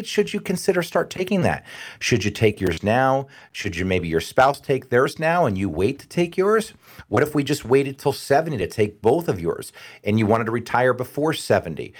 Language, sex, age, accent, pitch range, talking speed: English, male, 40-59, American, 100-130 Hz, 220 wpm